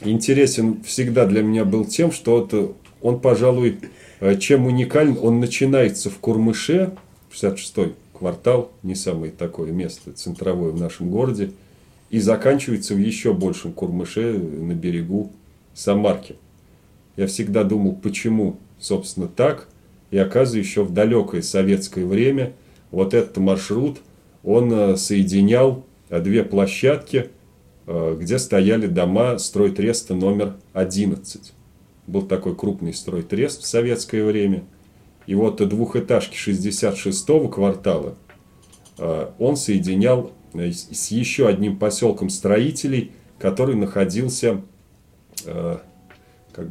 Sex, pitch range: male, 95-120 Hz